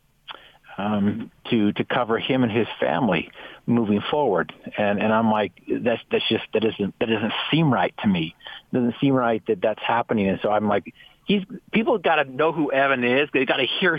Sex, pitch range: male, 110-135 Hz